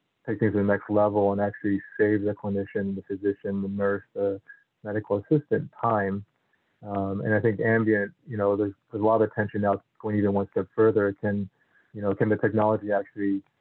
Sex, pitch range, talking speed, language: male, 100-110 Hz, 195 wpm, English